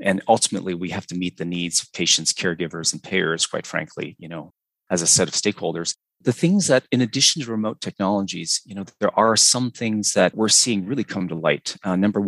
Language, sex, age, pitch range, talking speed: English, male, 30-49, 95-110 Hz, 220 wpm